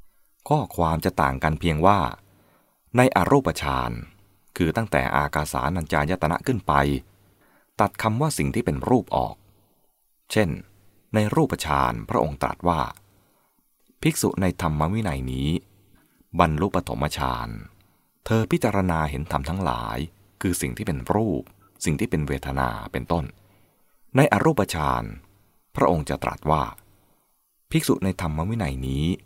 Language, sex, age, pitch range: English, male, 20-39, 70-100 Hz